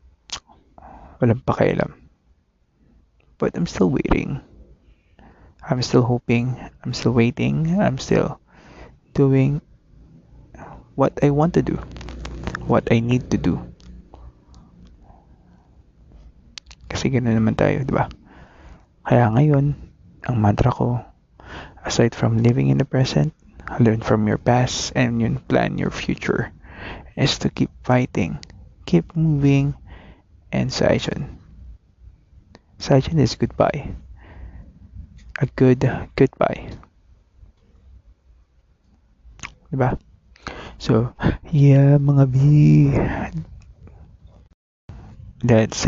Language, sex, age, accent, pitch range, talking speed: Filipino, male, 20-39, native, 75-125 Hz, 90 wpm